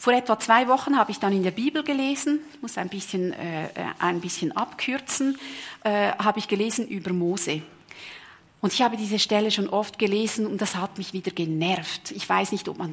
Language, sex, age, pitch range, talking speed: German, female, 40-59, 190-245 Hz, 200 wpm